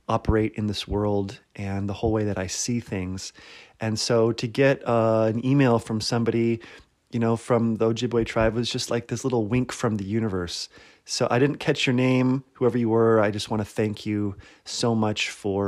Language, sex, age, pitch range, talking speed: English, male, 30-49, 100-115 Hz, 205 wpm